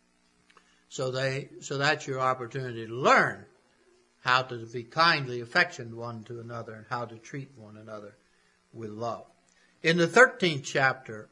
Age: 60-79